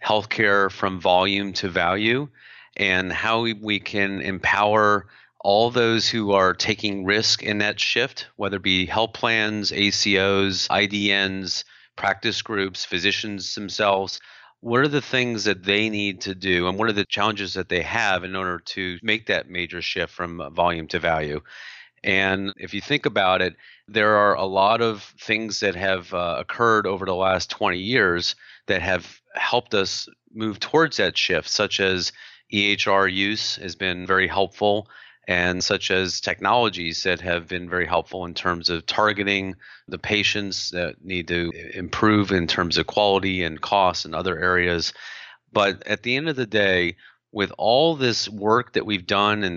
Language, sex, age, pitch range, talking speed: English, male, 30-49, 90-105 Hz, 165 wpm